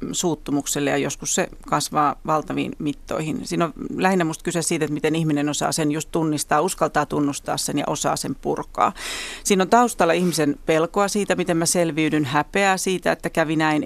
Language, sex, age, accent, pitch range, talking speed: Finnish, female, 40-59, native, 150-185 Hz, 180 wpm